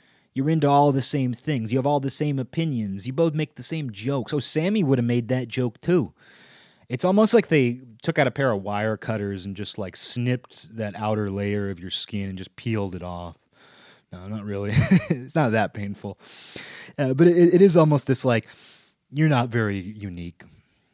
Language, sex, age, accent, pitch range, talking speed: English, male, 30-49, American, 95-130 Hz, 205 wpm